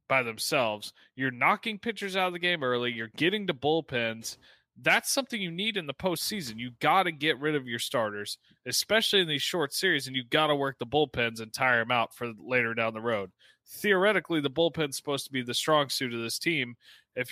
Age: 30-49